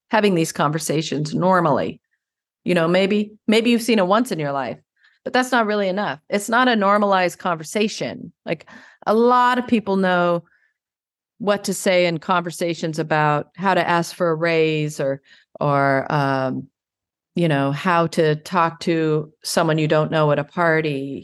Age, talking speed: 40-59, 165 wpm